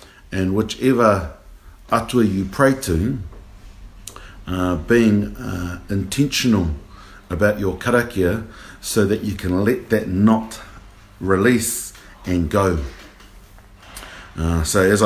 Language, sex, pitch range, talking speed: English, male, 90-110 Hz, 105 wpm